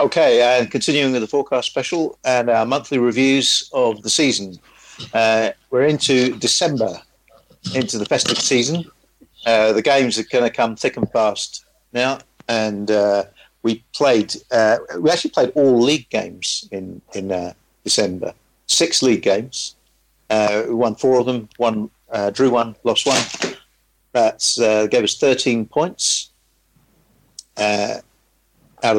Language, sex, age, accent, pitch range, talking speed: English, male, 50-69, British, 105-125 Hz, 145 wpm